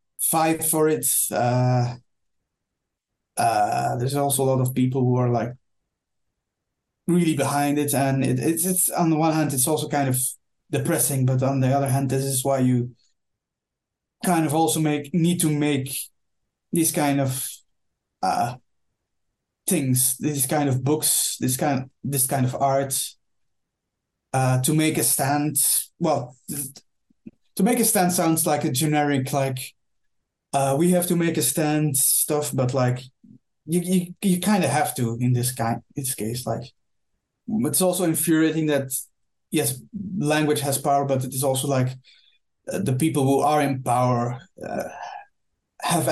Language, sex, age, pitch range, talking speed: English, male, 20-39, 125-155 Hz, 155 wpm